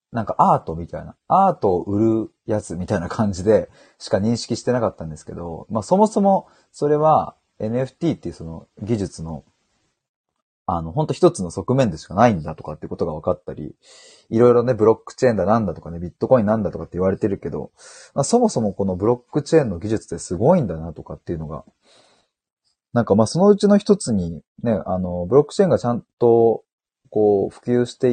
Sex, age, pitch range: male, 30-49, 90-150 Hz